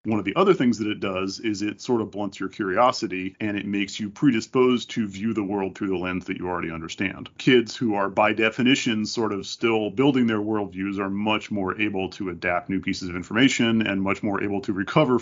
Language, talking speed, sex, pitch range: English, 230 wpm, male, 100-125 Hz